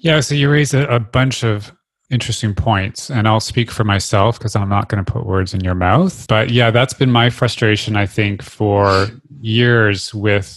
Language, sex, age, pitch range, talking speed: English, male, 30-49, 95-115 Hz, 200 wpm